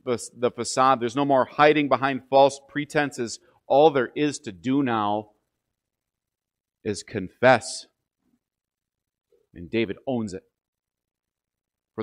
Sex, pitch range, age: male, 115-150 Hz, 40-59